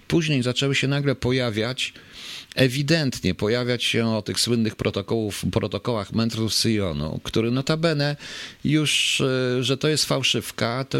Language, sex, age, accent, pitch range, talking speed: Polish, male, 40-59, native, 95-120 Hz, 125 wpm